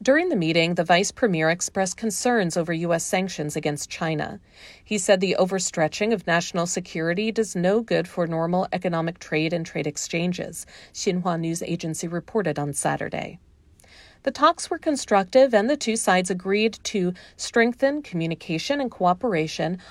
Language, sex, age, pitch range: Chinese, female, 40-59, 165-220 Hz